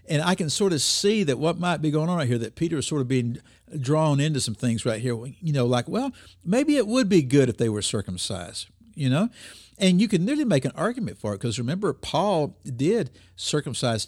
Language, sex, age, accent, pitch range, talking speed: English, male, 50-69, American, 105-150 Hz, 235 wpm